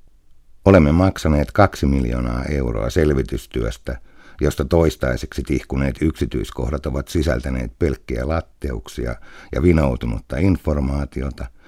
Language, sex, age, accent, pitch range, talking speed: Finnish, male, 60-79, native, 65-80 Hz, 85 wpm